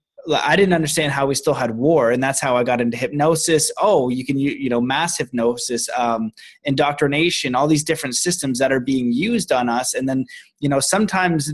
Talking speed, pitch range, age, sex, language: 210 wpm, 135-170 Hz, 20-39, male, German